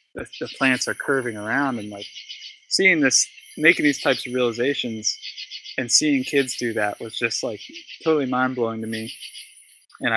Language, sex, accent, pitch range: English, male, American, 115-140 Hz